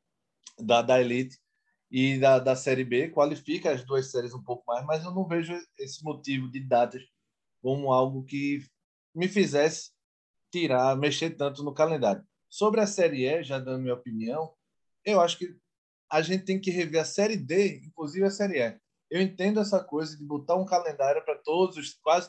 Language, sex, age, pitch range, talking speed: Portuguese, male, 20-39, 135-190 Hz, 185 wpm